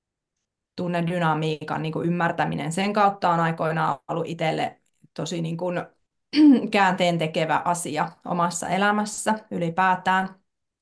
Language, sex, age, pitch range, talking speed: Finnish, female, 30-49, 165-205 Hz, 100 wpm